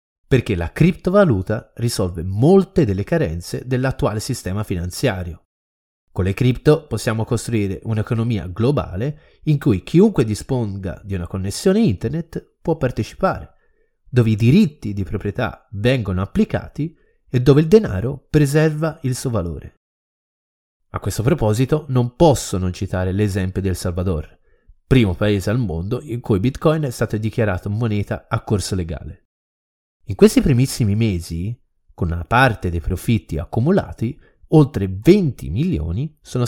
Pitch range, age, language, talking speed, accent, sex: 95-140 Hz, 30-49, Italian, 130 wpm, native, male